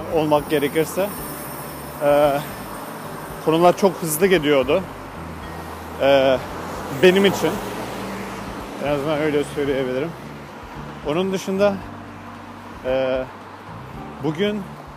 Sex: male